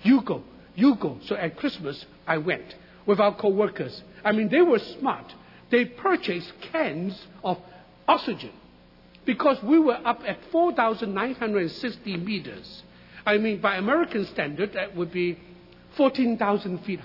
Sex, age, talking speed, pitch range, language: male, 60-79, 135 wpm, 180-235 Hz, English